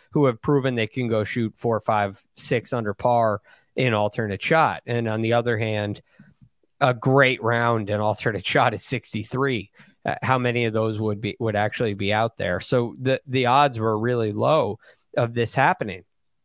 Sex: male